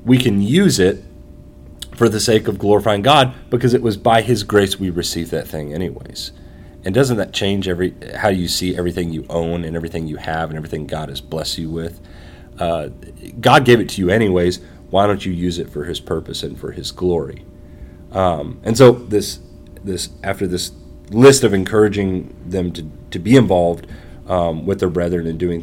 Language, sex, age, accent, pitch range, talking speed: English, male, 30-49, American, 80-95 Hz, 195 wpm